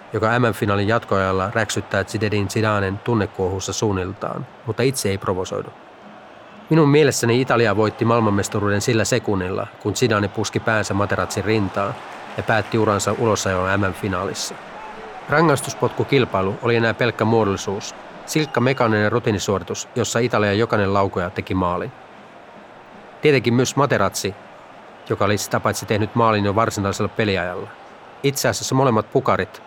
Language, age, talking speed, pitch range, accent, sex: Finnish, 30-49, 120 wpm, 100-115 Hz, native, male